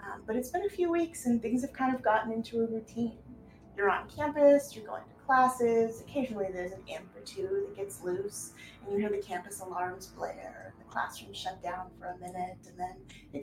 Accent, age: American, 20-39